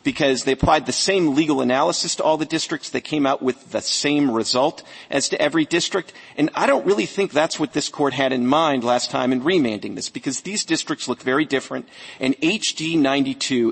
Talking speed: 210 wpm